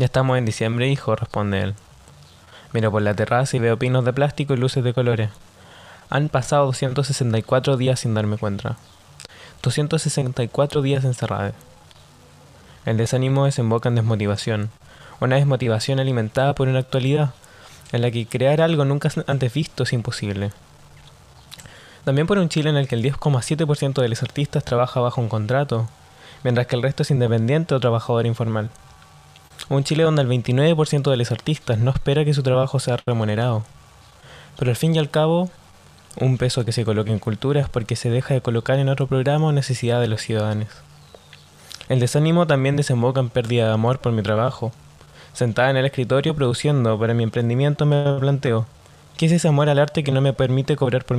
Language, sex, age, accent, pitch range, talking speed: Spanish, male, 10-29, Argentinian, 115-140 Hz, 175 wpm